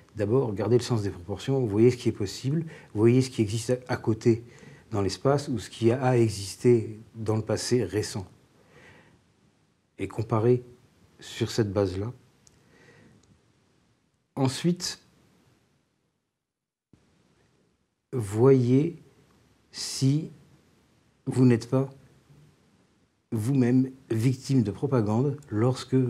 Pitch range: 105-130 Hz